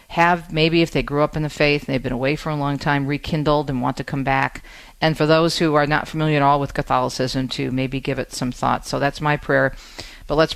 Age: 50-69